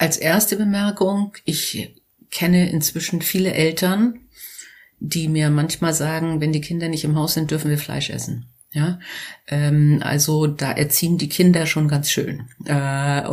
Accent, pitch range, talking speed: German, 140-160 Hz, 155 wpm